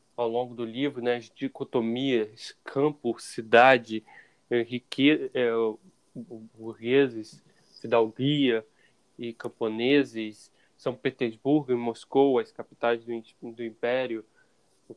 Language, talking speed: Portuguese, 100 wpm